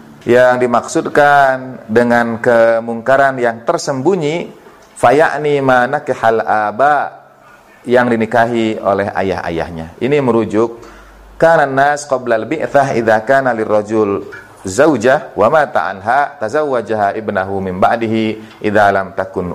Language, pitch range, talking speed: Indonesian, 100-120 Hz, 100 wpm